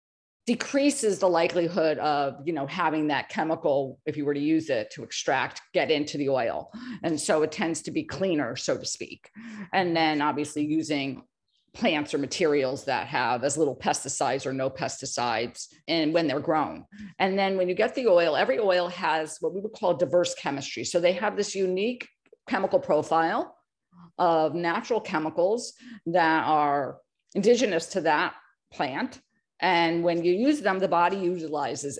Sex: female